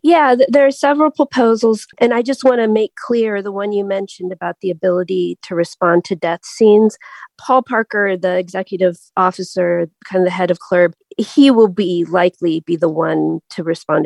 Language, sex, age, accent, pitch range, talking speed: English, female, 40-59, American, 175-215 Hz, 190 wpm